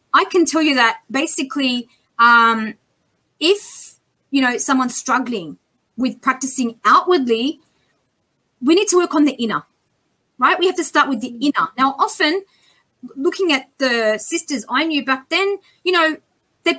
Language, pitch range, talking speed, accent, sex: English, 250-310 Hz, 155 wpm, Australian, female